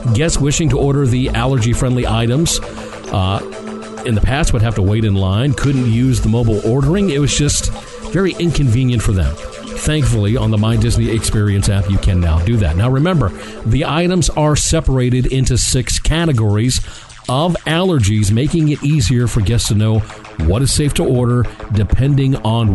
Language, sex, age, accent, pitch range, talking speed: English, male, 50-69, American, 105-135 Hz, 175 wpm